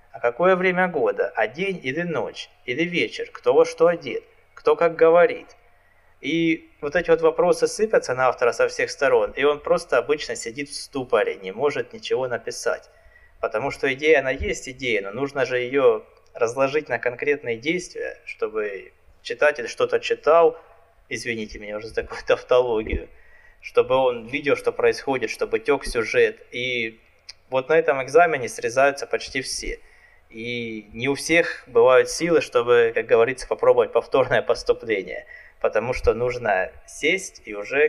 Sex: male